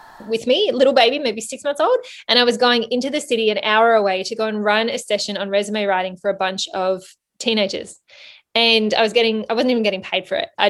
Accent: Australian